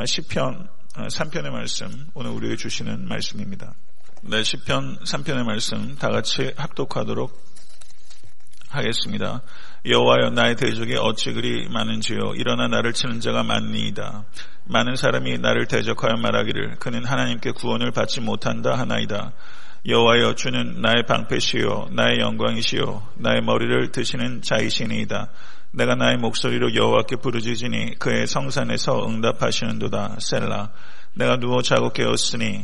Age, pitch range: 40-59, 100-120 Hz